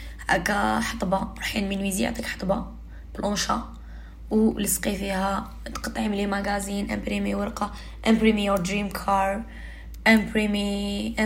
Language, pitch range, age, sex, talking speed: Arabic, 185-225 Hz, 20-39, female, 100 wpm